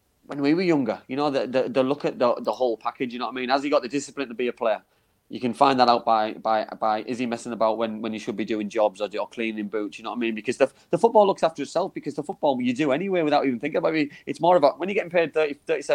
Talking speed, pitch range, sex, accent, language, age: 325 wpm, 120-150 Hz, male, British, English, 30-49